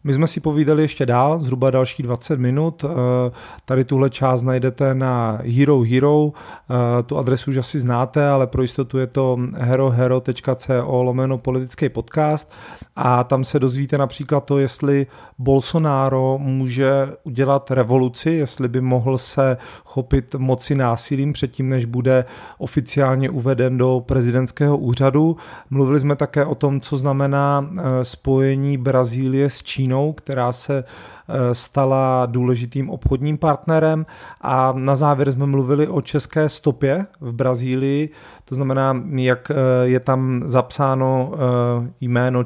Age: 40-59